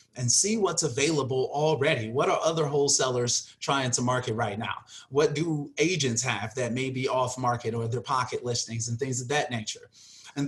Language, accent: English, American